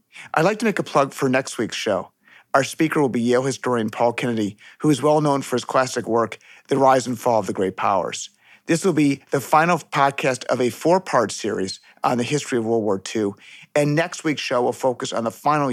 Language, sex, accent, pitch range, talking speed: English, male, American, 115-150 Hz, 230 wpm